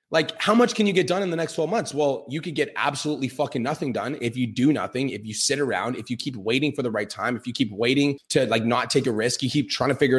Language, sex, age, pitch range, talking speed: English, male, 30-49, 125-160 Hz, 300 wpm